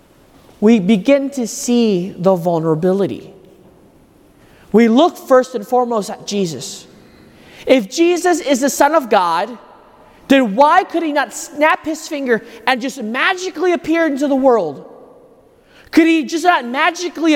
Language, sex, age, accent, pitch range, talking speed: English, male, 30-49, American, 235-330 Hz, 140 wpm